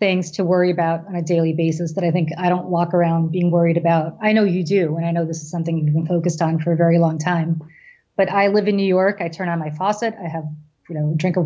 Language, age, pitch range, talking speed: English, 30-49, 170-200 Hz, 285 wpm